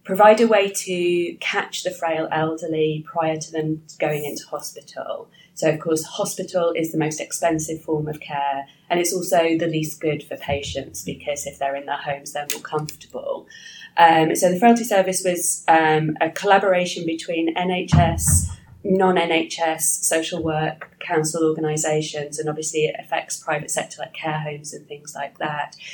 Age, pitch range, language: 30-49, 155-180 Hz, English